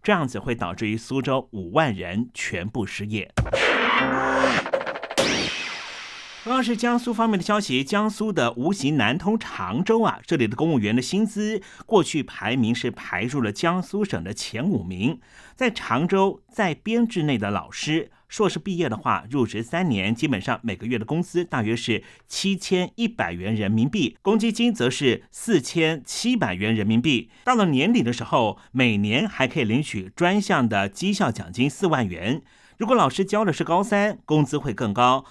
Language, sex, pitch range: Chinese, male, 115-195 Hz